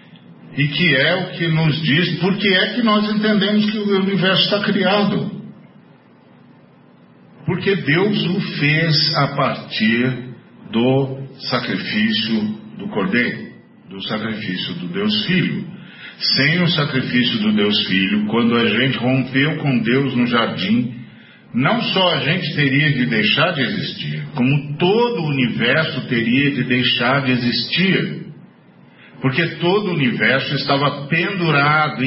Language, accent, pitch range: Portuguese, Brazilian, 130-185 Hz